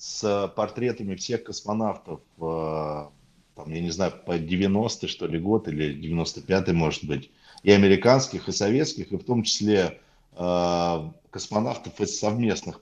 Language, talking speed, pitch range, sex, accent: Russian, 130 wpm, 95-120 Hz, male, native